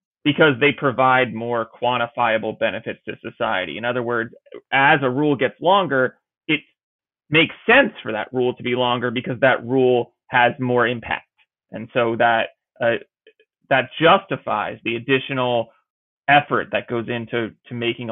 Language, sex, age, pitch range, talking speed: English, male, 30-49, 115-135 Hz, 150 wpm